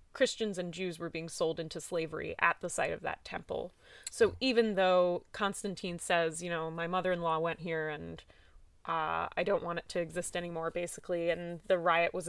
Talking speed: 190 wpm